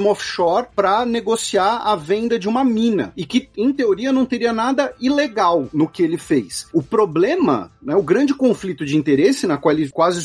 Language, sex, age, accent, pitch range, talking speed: Portuguese, male, 40-59, Brazilian, 170-260 Hz, 185 wpm